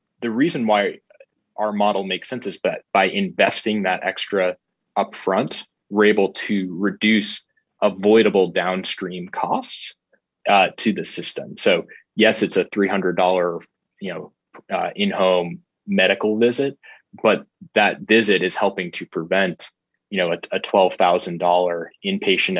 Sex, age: male, 20-39